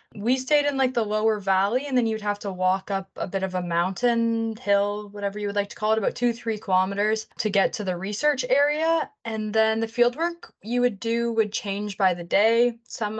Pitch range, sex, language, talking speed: 195-240 Hz, female, English, 225 wpm